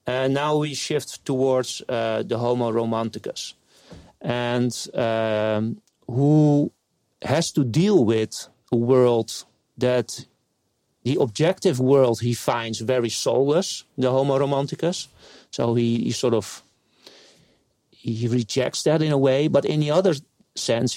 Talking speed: 130 wpm